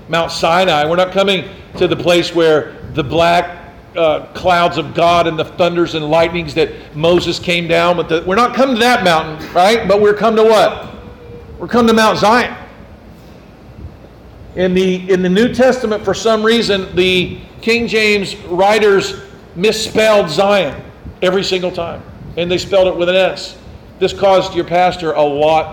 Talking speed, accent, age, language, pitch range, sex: 165 wpm, American, 50-69, English, 150-185 Hz, male